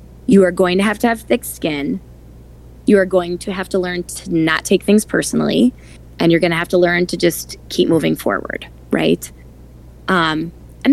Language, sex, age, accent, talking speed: English, female, 20-39, American, 190 wpm